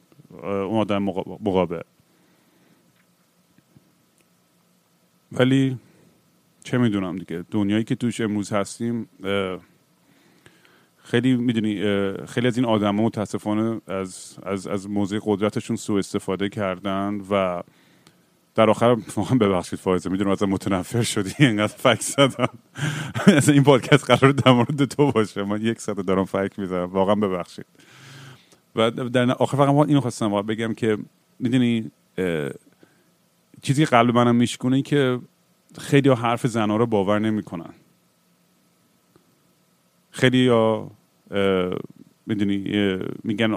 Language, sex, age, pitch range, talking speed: Persian, male, 30-49, 100-130 Hz, 115 wpm